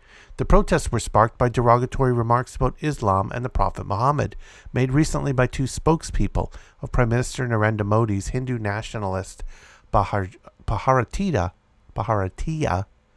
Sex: male